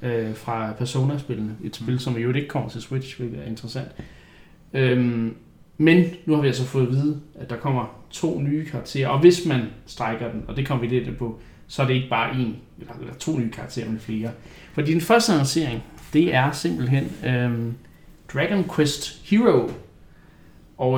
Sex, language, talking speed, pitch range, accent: male, Danish, 185 wpm, 115-150 Hz, native